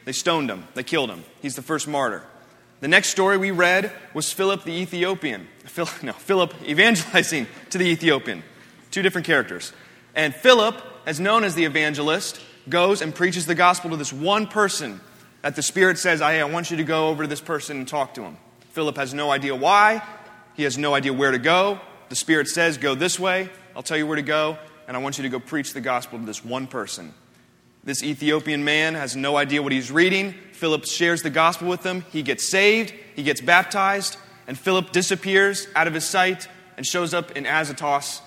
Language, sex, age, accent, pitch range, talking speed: English, male, 30-49, American, 140-180 Hz, 205 wpm